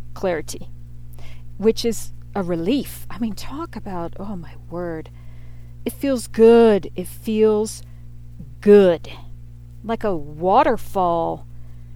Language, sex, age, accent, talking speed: English, female, 40-59, American, 105 wpm